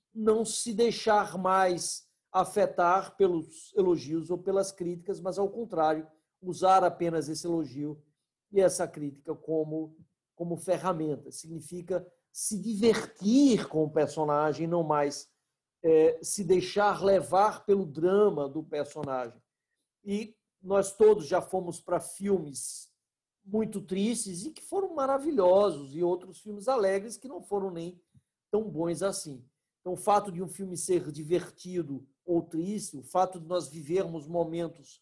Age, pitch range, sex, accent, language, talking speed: 50-69, 155-195 Hz, male, Brazilian, Portuguese, 135 wpm